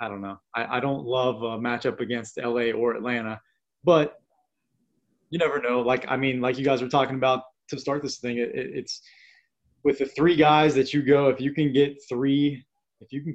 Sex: male